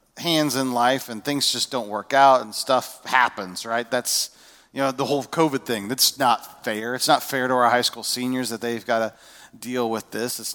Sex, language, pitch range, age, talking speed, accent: male, English, 110-135 Hz, 40-59, 220 wpm, American